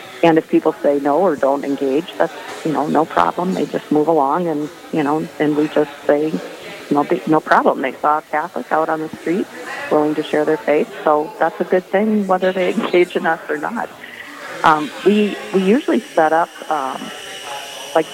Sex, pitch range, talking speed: female, 145-170 Hz, 200 wpm